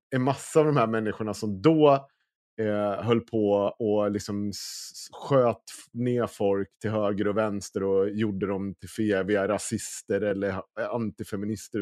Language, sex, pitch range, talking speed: Swedish, male, 105-135 Hz, 140 wpm